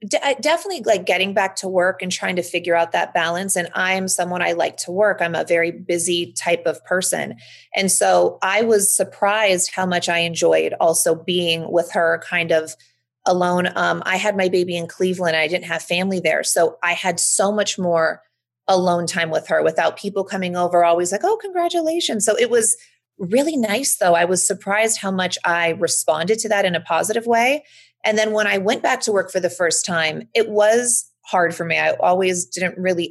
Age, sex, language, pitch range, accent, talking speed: 30-49, female, English, 170-210 Hz, American, 205 wpm